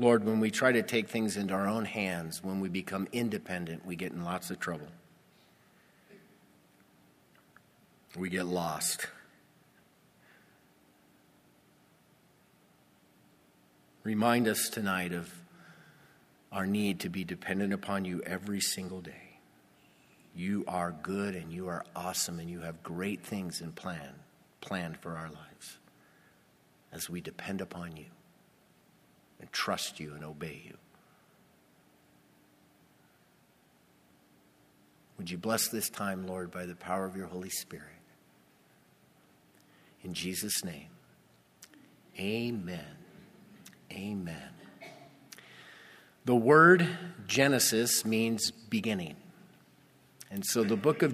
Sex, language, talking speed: male, English, 110 wpm